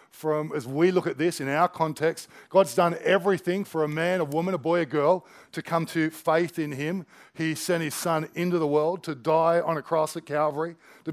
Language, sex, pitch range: English, male, 155-185 Hz